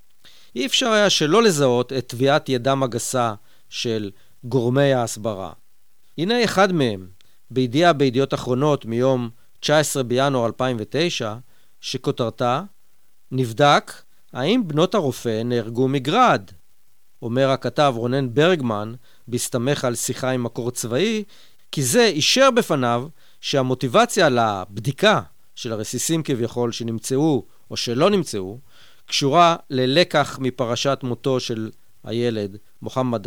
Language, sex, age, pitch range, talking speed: Hebrew, male, 40-59, 115-145 Hz, 105 wpm